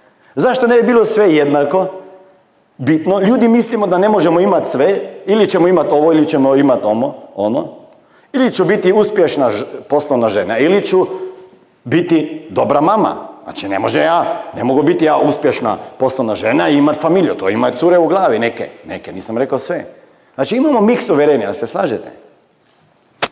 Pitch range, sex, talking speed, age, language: 125-195 Hz, male, 165 wpm, 40-59, Croatian